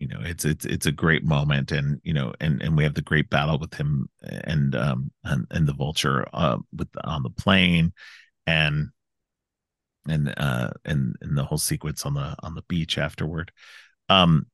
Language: English